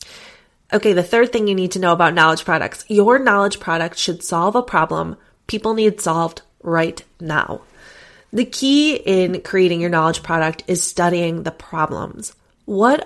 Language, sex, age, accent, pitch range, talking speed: English, female, 30-49, American, 170-220 Hz, 160 wpm